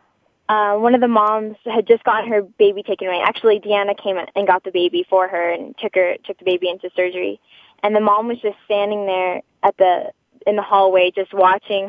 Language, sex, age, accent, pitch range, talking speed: English, female, 10-29, American, 185-215 Hz, 215 wpm